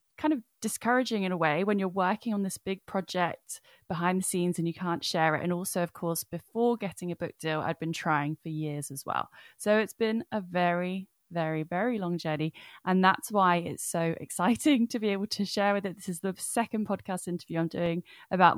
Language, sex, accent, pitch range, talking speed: English, female, British, 165-200 Hz, 225 wpm